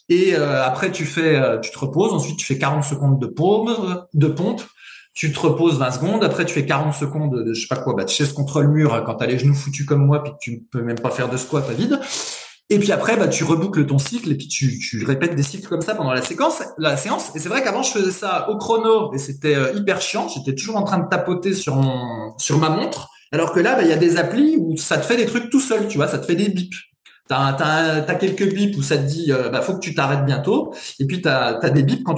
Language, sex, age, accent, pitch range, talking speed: French, male, 20-39, French, 140-200 Hz, 280 wpm